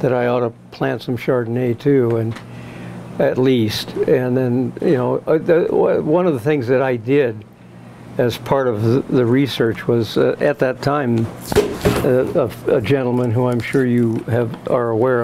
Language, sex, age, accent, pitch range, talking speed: English, male, 60-79, American, 110-130 Hz, 165 wpm